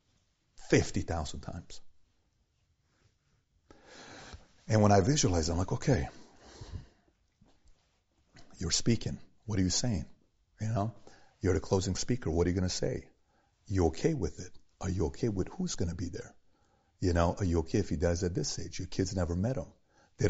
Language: Hindi